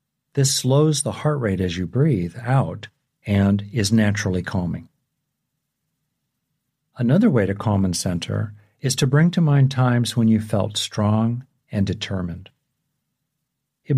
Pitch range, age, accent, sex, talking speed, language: 105-140 Hz, 50-69, American, male, 135 wpm, English